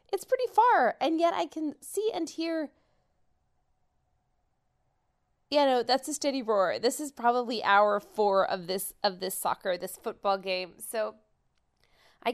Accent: American